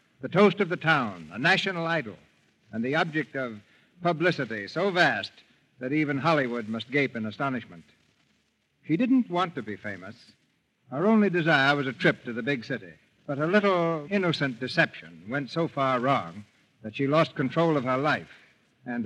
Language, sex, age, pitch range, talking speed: English, male, 60-79, 120-165 Hz, 175 wpm